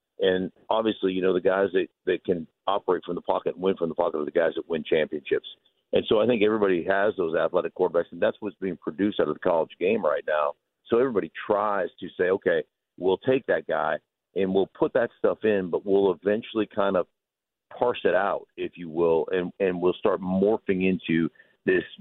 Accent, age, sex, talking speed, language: American, 50-69, male, 215 wpm, English